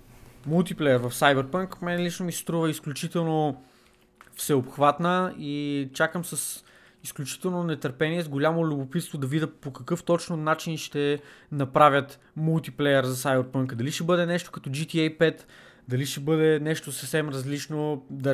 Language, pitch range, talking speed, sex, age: Bulgarian, 135-160 Hz, 135 wpm, male, 20-39